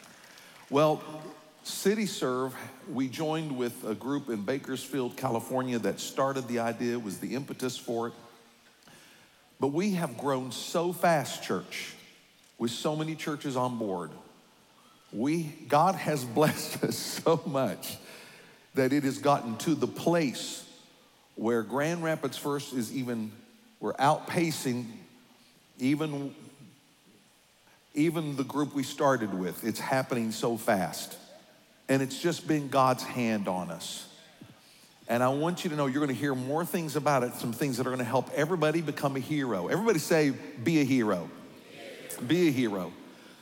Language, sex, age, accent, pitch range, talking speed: English, male, 50-69, American, 120-155 Hz, 145 wpm